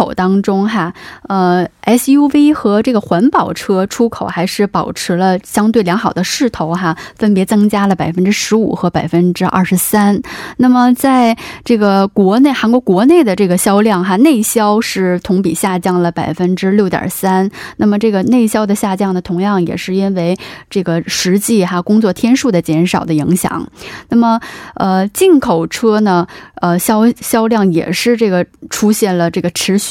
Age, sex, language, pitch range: 20-39, female, Korean, 180-220 Hz